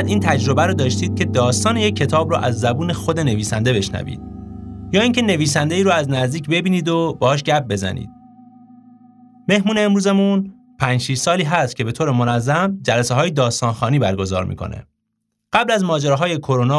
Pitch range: 110-165 Hz